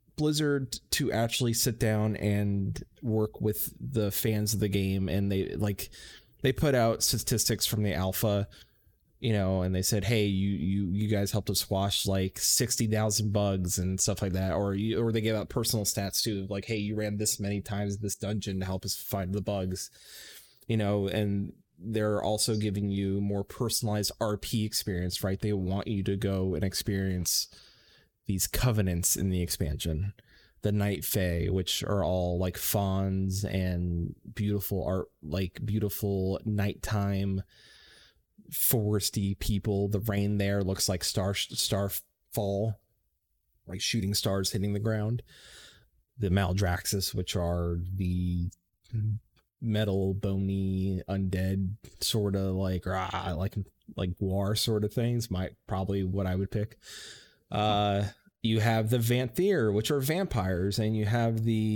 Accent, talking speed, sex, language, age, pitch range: American, 155 wpm, male, English, 20-39, 95-110 Hz